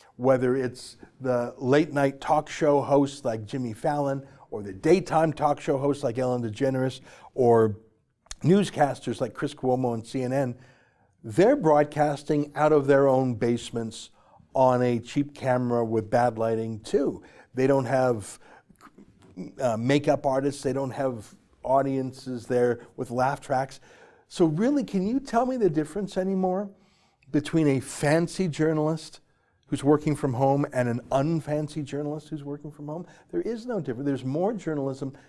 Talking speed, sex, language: 150 wpm, male, English